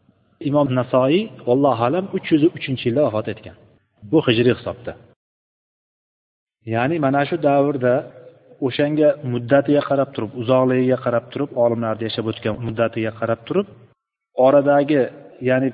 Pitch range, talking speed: 115-140 Hz, 125 wpm